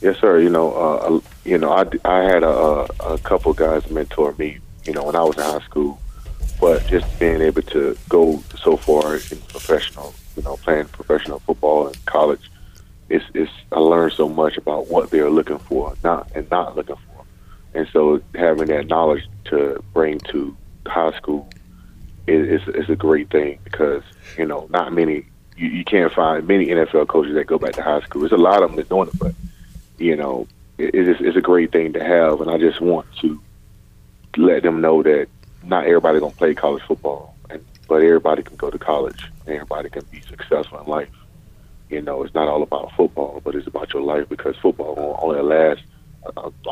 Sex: male